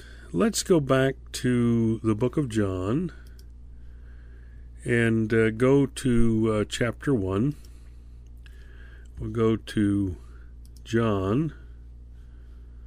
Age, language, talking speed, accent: 50-69, English, 90 wpm, American